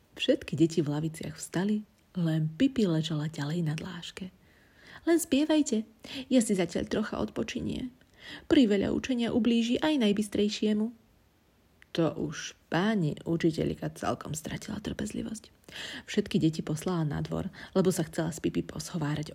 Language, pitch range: Slovak, 175-230 Hz